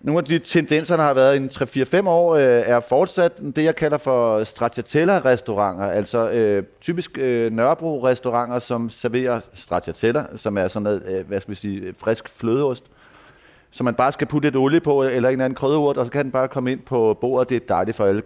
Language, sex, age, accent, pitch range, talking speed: Danish, male, 30-49, native, 120-150 Hz, 210 wpm